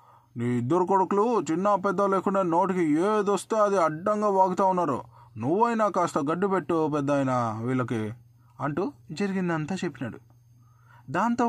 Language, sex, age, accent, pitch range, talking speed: Telugu, male, 20-39, native, 135-195 Hz, 130 wpm